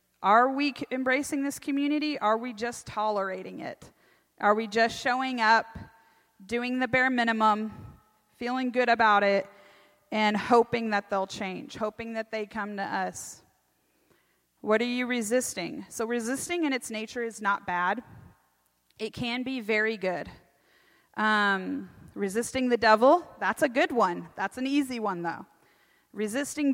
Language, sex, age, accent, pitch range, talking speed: English, female, 30-49, American, 205-250 Hz, 145 wpm